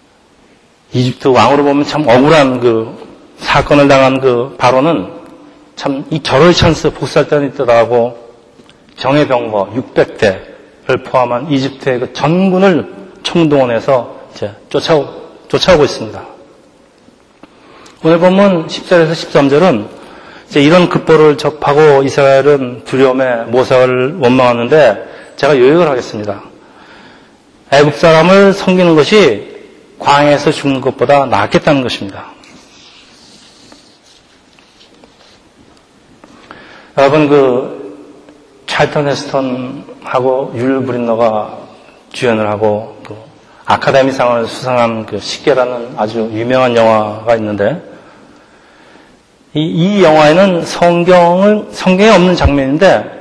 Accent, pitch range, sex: native, 120-150 Hz, male